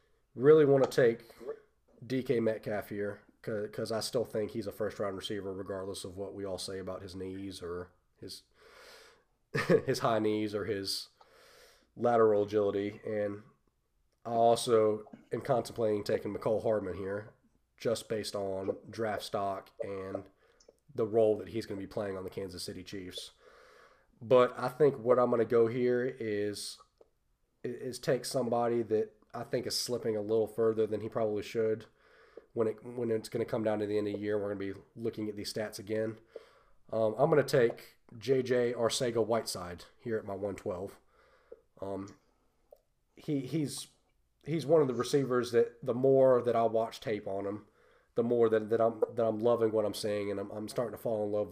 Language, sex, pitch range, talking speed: English, male, 100-120 Hz, 185 wpm